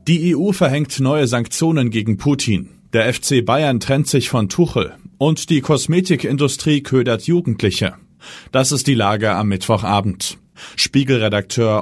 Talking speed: 130 wpm